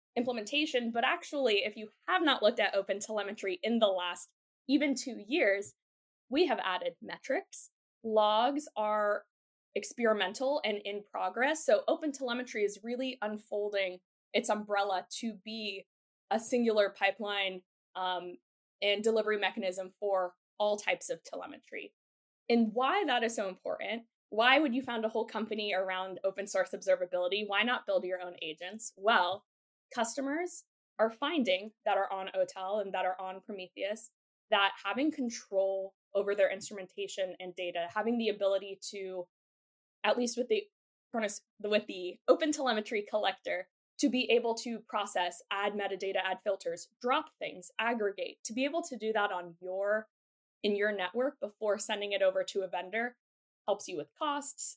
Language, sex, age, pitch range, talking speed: English, female, 10-29, 195-250 Hz, 155 wpm